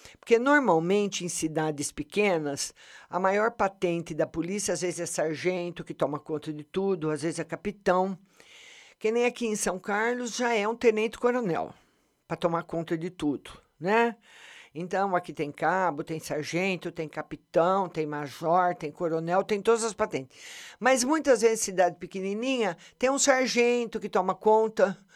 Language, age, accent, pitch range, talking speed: Portuguese, 50-69, Brazilian, 165-230 Hz, 160 wpm